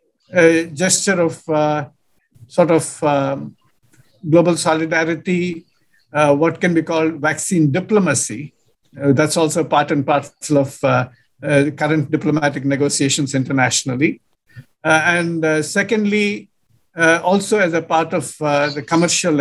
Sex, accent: male, Indian